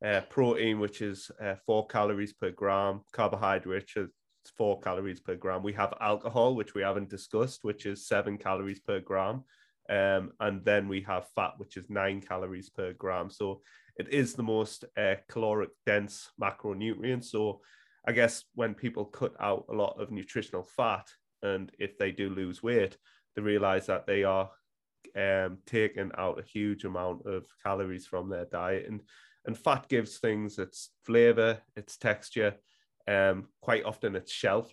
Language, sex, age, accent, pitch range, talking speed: English, male, 30-49, British, 100-110 Hz, 170 wpm